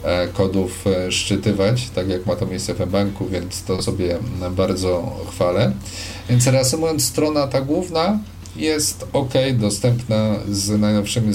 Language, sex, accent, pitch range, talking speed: Polish, male, native, 95-115 Hz, 125 wpm